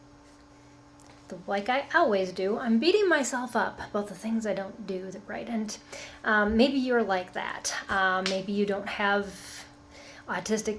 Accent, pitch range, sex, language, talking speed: American, 195-255 Hz, female, English, 145 wpm